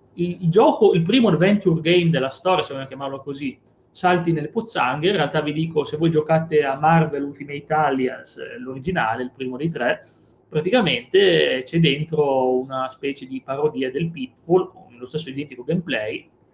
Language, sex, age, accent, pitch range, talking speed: Italian, male, 30-49, native, 135-170 Hz, 165 wpm